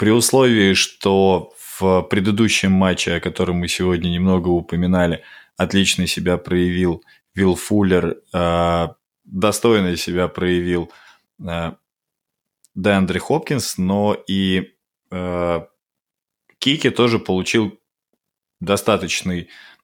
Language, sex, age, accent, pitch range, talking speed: Russian, male, 20-39, native, 85-100 Hz, 85 wpm